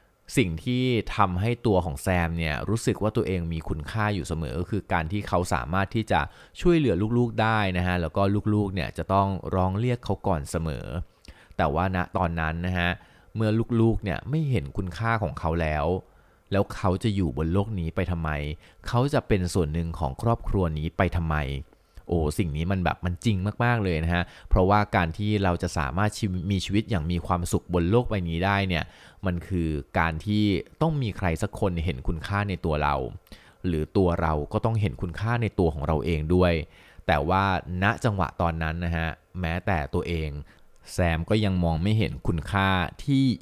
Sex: male